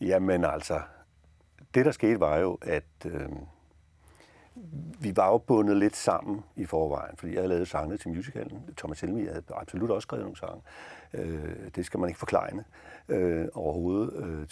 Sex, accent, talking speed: male, native, 170 wpm